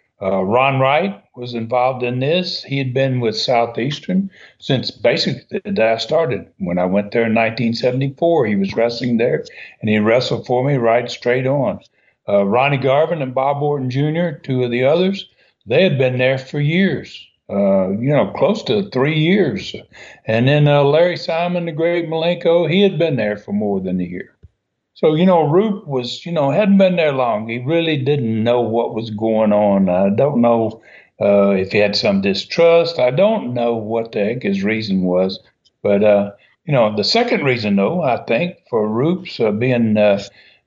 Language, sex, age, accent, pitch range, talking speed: English, male, 60-79, American, 110-165 Hz, 190 wpm